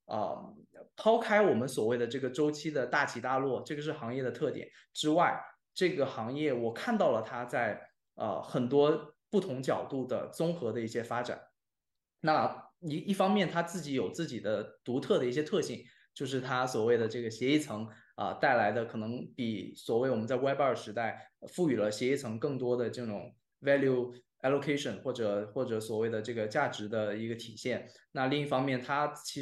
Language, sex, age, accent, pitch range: Chinese, male, 20-39, native, 115-150 Hz